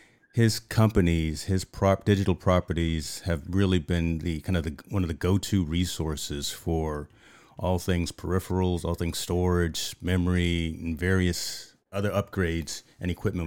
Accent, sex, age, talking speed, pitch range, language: American, male, 30-49, 145 wpm, 80-95 Hz, English